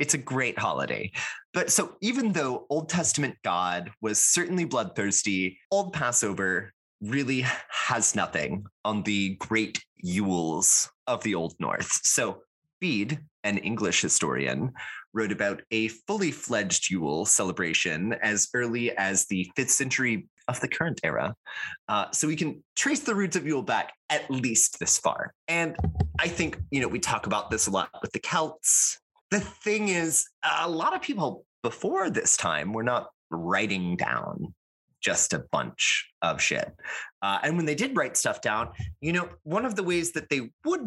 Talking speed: 165 wpm